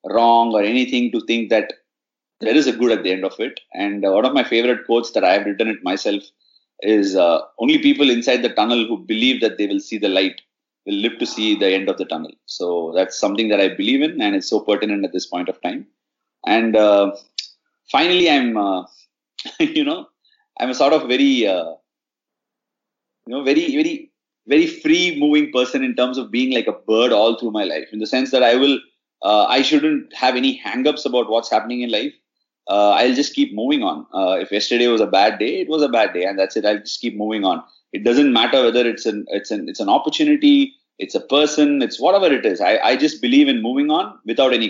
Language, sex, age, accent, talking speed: Hindi, male, 30-49, native, 230 wpm